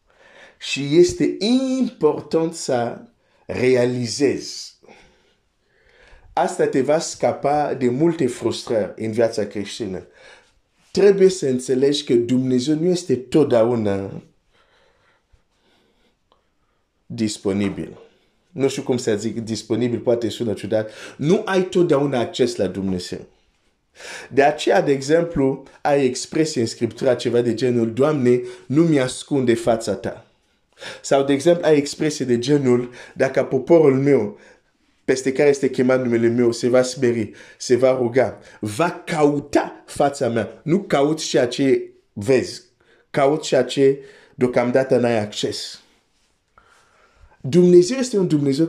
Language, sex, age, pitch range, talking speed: Romanian, male, 50-69, 120-160 Hz, 120 wpm